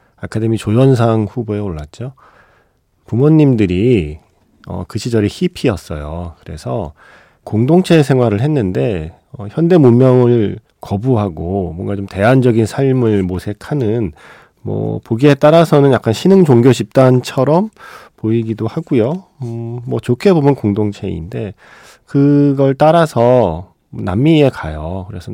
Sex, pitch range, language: male, 95-130 Hz, Korean